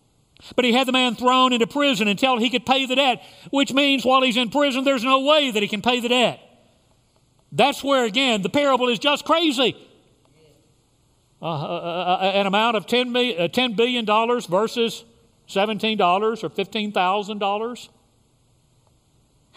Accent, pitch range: American, 145-215 Hz